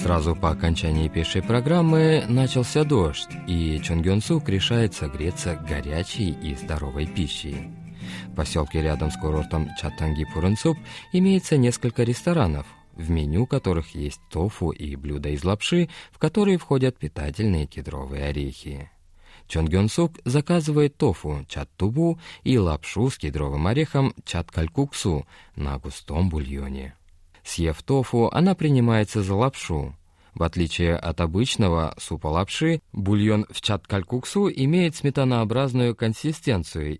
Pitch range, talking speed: 75-120 Hz, 115 wpm